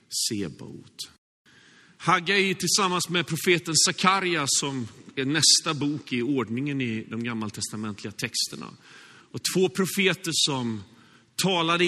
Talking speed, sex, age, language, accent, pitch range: 105 wpm, male, 40-59, Swedish, native, 130-185 Hz